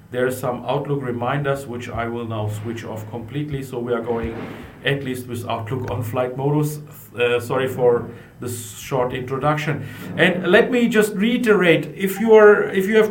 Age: 50-69